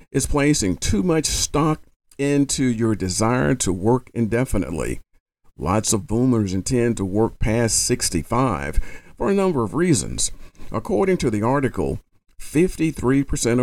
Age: 50-69